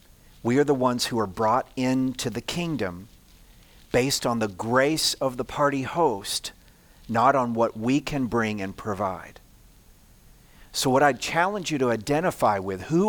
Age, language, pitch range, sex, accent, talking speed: 50-69, English, 100-135 Hz, male, American, 160 wpm